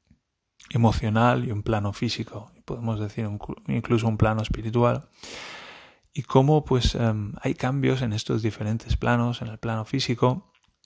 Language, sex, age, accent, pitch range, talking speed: Spanish, male, 30-49, Spanish, 105-120 Hz, 145 wpm